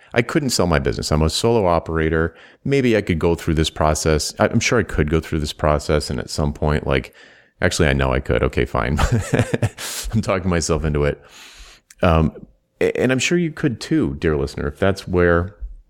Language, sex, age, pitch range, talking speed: English, male, 30-49, 75-90 Hz, 200 wpm